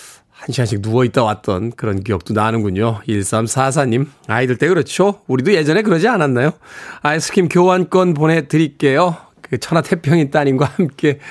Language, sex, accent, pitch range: Korean, male, native, 135-195 Hz